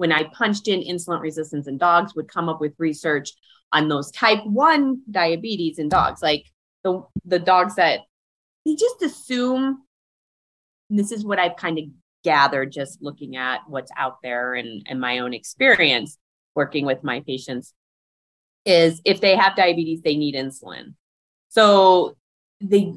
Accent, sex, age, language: American, female, 30-49, English